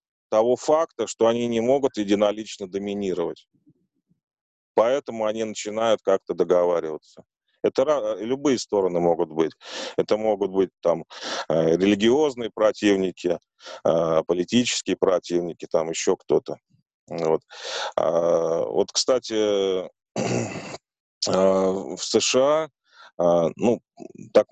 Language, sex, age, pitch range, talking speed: Russian, male, 30-49, 95-120 Hz, 90 wpm